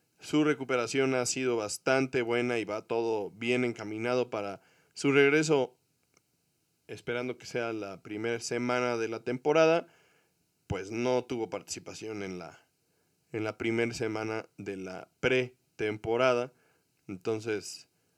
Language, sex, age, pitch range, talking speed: Spanish, male, 20-39, 110-135 Hz, 120 wpm